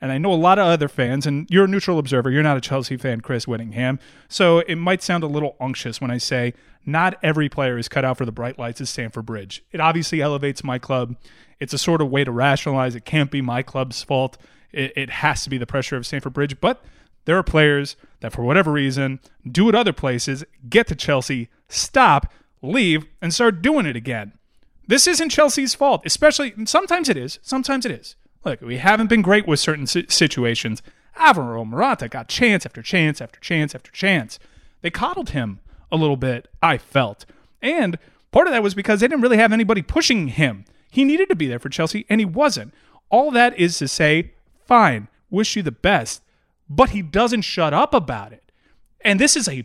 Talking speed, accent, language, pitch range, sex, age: 210 wpm, American, English, 130-200 Hz, male, 30-49